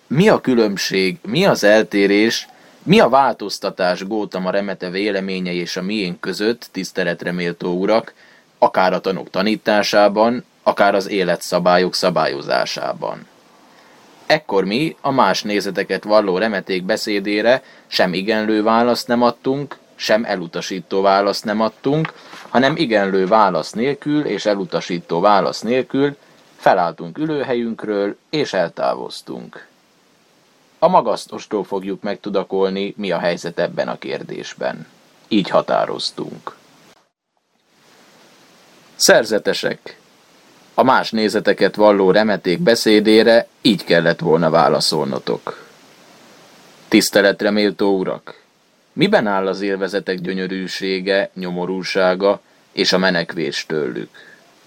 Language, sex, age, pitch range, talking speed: Hungarian, male, 20-39, 90-110 Hz, 105 wpm